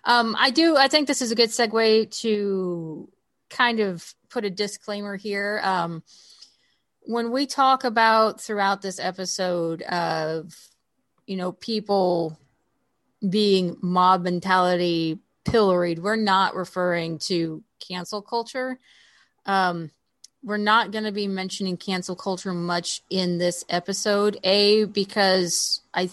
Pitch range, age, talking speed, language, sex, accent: 180-240 Hz, 30-49, 125 wpm, English, female, American